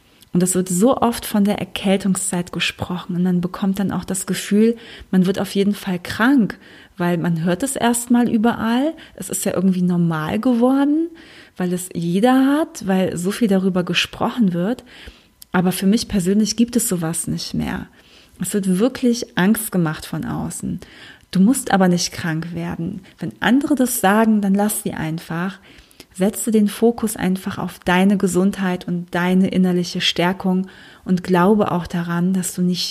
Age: 30-49